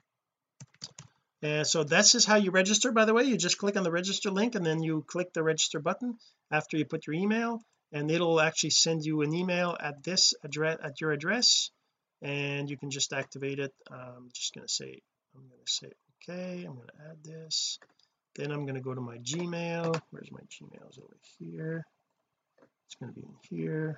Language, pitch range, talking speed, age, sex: English, 140-175 Hz, 210 wpm, 30-49, male